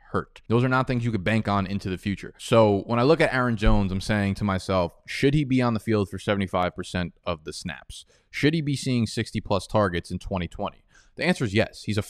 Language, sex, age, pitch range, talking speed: English, male, 20-39, 100-120 Hz, 245 wpm